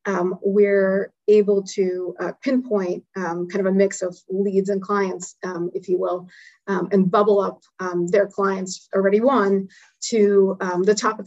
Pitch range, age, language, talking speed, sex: 185-205 Hz, 30-49, English, 175 wpm, female